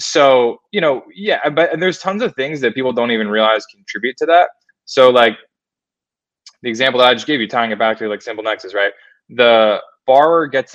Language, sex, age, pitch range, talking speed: English, male, 20-39, 110-130 Hz, 205 wpm